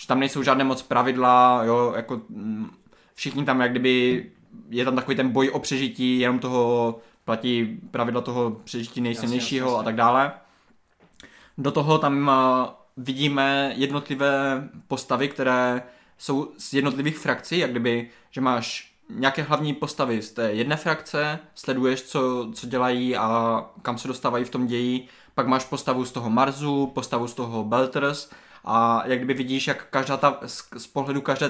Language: Czech